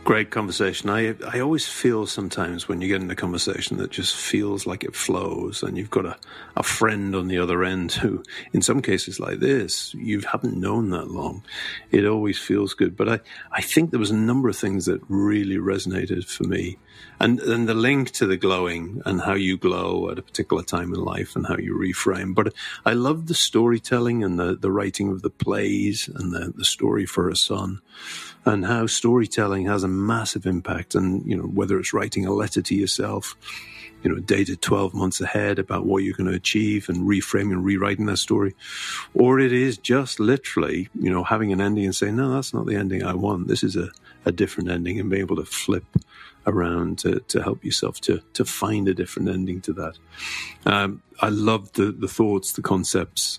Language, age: English, 40-59